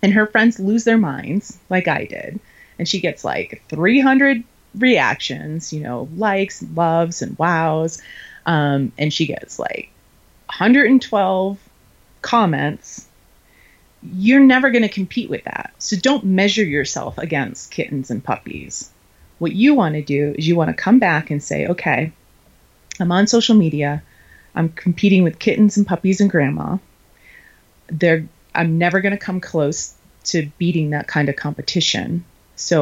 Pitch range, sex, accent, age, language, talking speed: 150-195 Hz, female, American, 30-49, English, 150 wpm